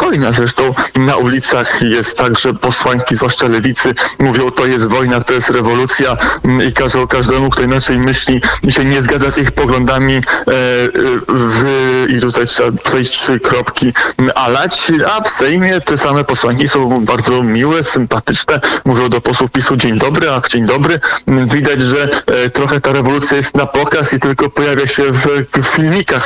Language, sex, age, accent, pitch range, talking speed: Polish, male, 20-39, native, 125-145 Hz, 160 wpm